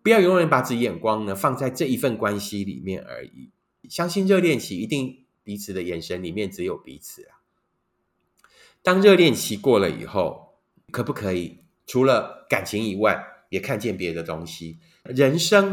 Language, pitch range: Chinese, 105-170 Hz